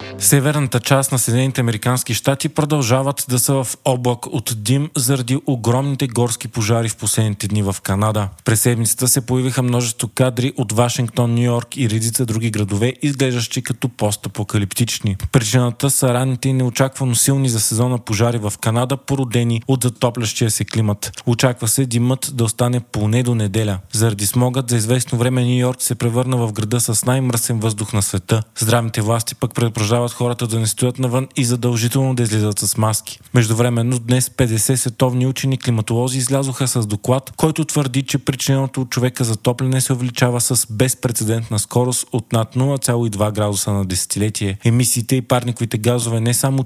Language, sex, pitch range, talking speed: Bulgarian, male, 110-130 Hz, 160 wpm